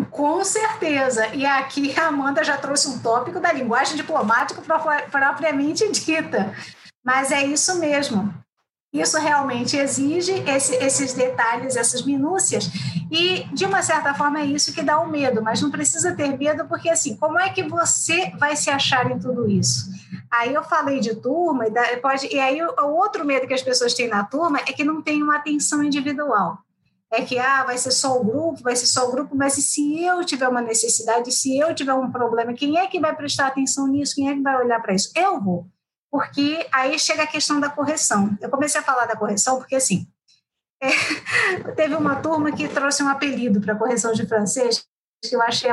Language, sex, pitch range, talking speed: Portuguese, female, 245-310 Hz, 200 wpm